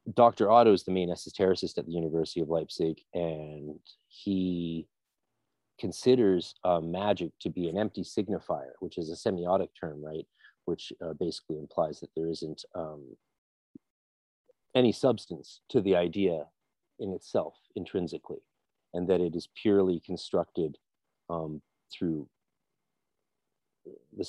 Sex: male